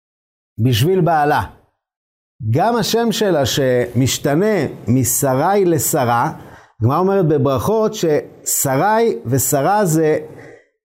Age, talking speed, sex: 50-69, 75 wpm, male